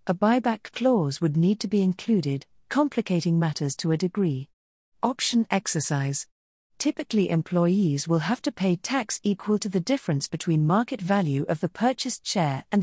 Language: English